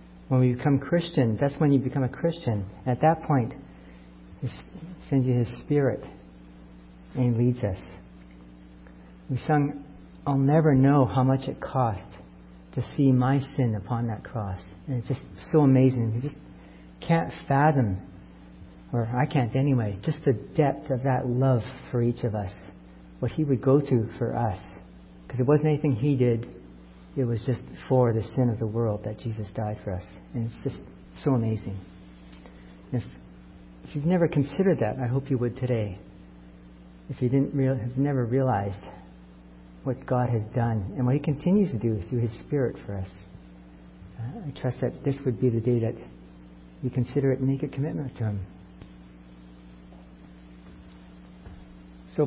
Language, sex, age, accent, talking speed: English, male, 50-69, American, 165 wpm